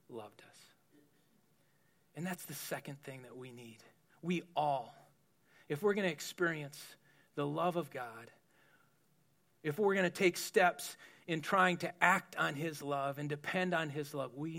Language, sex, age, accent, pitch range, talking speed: English, male, 40-59, American, 140-175 Hz, 165 wpm